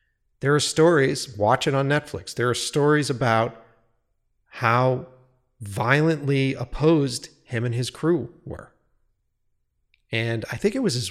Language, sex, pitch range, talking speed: English, male, 115-145 Hz, 135 wpm